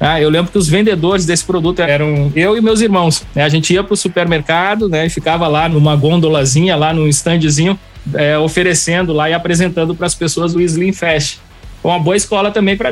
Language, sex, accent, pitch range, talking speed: Portuguese, male, Brazilian, 155-195 Hz, 210 wpm